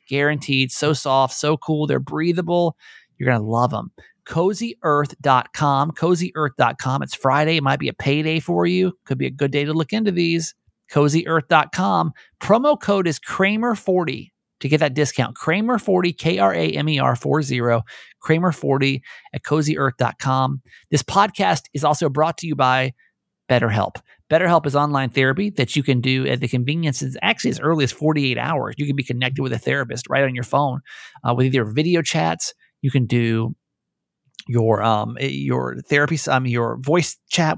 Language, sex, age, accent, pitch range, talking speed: English, male, 30-49, American, 125-165 Hz, 160 wpm